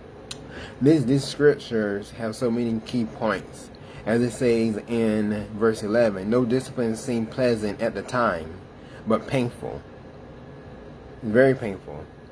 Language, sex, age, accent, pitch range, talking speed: English, male, 20-39, American, 110-130 Hz, 120 wpm